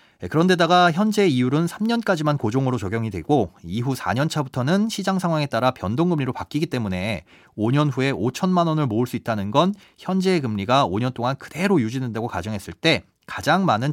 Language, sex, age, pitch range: Korean, male, 30-49, 115-165 Hz